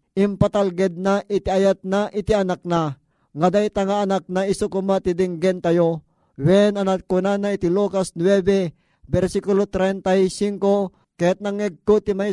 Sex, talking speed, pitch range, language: male, 135 wpm, 185-205 Hz, Filipino